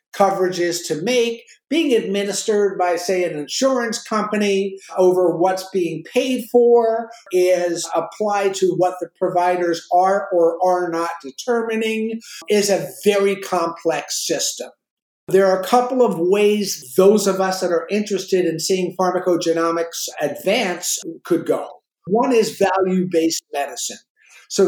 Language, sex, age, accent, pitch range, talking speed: English, male, 50-69, American, 165-195 Hz, 135 wpm